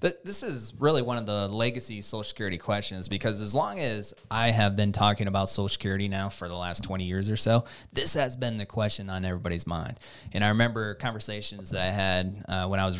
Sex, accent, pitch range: male, American, 100-115 Hz